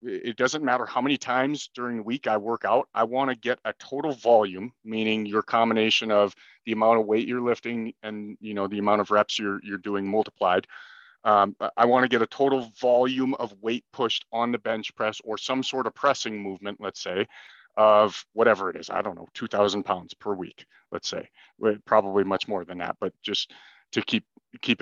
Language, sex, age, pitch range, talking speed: English, male, 40-59, 105-125 Hz, 210 wpm